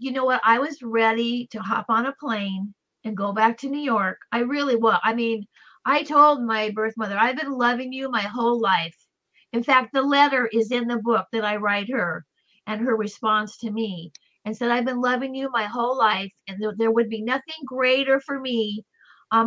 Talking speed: 215 wpm